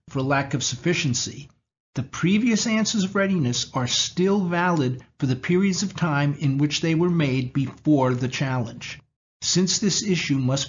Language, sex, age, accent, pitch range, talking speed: English, male, 50-69, American, 130-175 Hz, 165 wpm